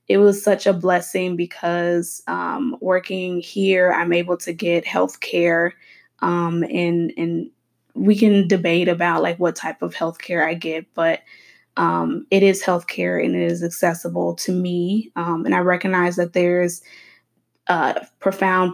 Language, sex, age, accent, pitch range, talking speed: English, female, 20-39, American, 175-200 Hz, 155 wpm